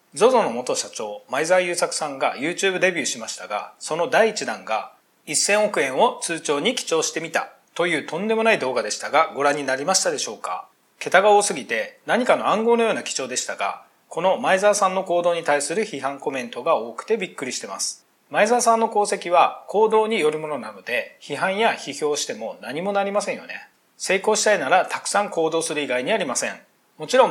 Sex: male